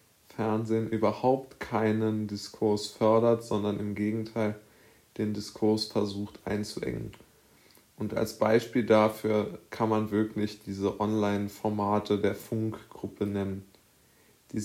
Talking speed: 100 wpm